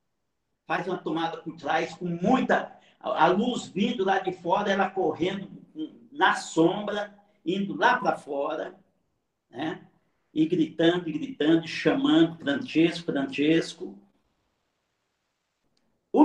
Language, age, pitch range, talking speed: Portuguese, 60-79, 165-255 Hz, 105 wpm